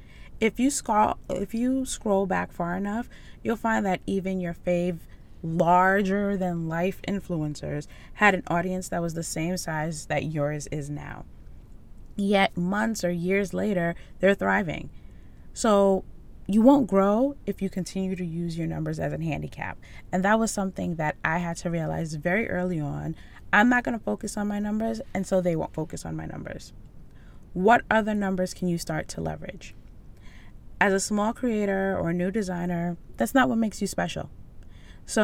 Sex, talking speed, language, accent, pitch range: female, 170 wpm, English, American, 165-210 Hz